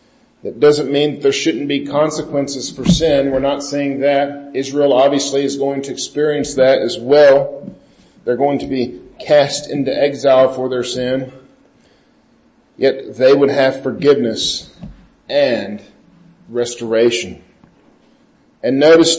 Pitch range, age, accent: 135-165 Hz, 40-59, American